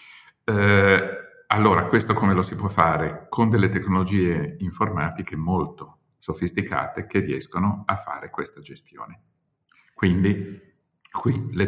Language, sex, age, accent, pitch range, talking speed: Italian, male, 50-69, native, 80-95 Hz, 115 wpm